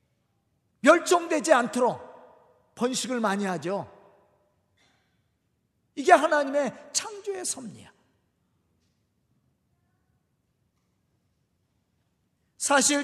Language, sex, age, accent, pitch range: Korean, male, 40-59, native, 230-325 Hz